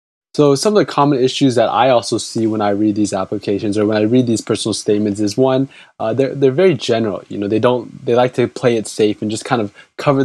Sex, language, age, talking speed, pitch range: male, English, 20-39, 260 wpm, 105-125 Hz